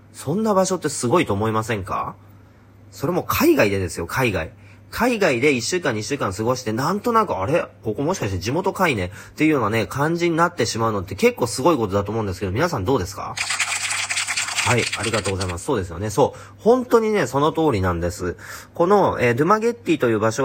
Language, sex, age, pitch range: Japanese, male, 40-59, 100-145 Hz